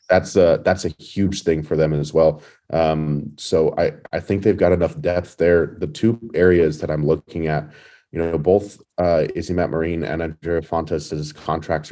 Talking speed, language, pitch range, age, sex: 190 wpm, English, 80-90 Hz, 30-49, male